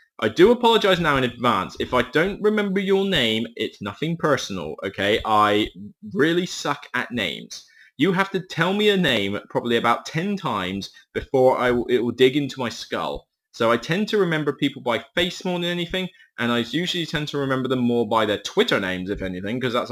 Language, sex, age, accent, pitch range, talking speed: English, male, 20-39, British, 105-145 Hz, 200 wpm